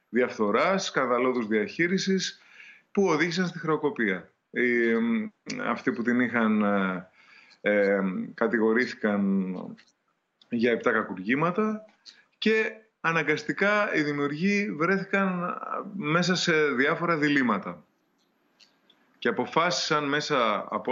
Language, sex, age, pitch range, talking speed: Greek, male, 20-39, 115-190 Hz, 80 wpm